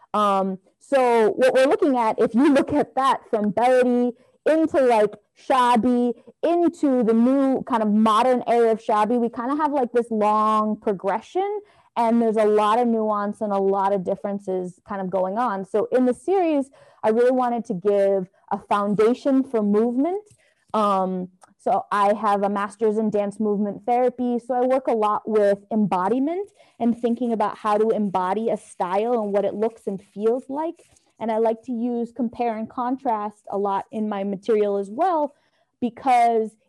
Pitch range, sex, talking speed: 210-255 Hz, female, 180 wpm